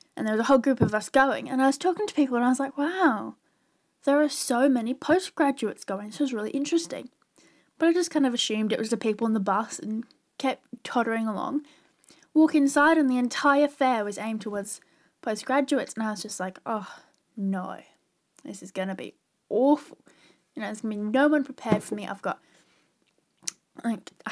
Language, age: English, 10-29